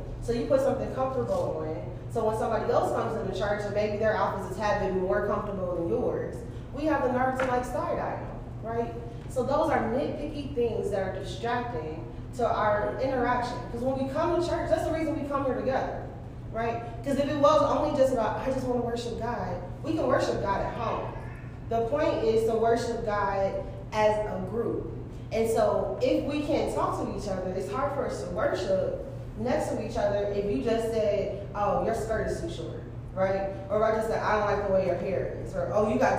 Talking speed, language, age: 220 wpm, English, 30-49